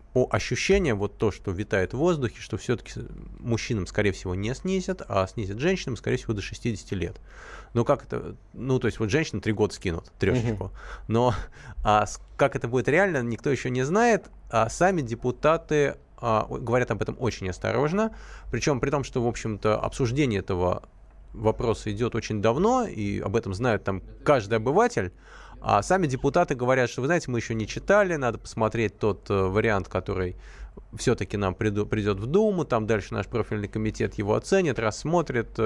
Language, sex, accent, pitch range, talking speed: Russian, male, native, 105-145 Hz, 170 wpm